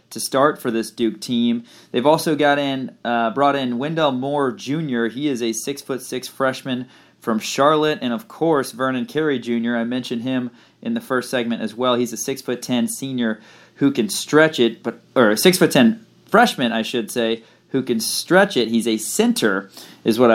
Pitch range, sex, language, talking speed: 115-145 Hz, male, English, 205 wpm